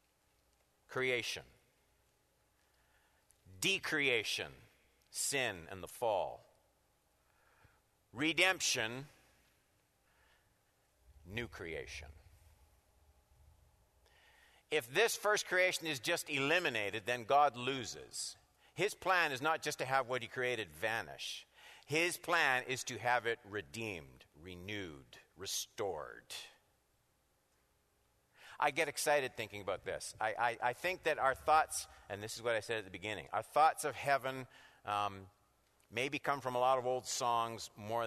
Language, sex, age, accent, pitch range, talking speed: English, male, 50-69, American, 95-150 Hz, 120 wpm